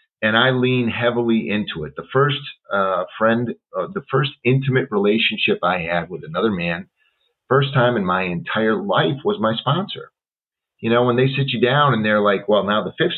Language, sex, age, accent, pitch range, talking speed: English, male, 40-59, American, 105-145 Hz, 195 wpm